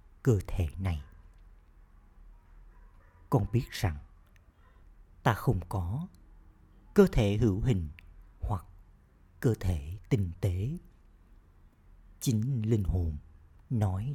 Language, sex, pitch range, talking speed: Vietnamese, male, 85-115 Hz, 95 wpm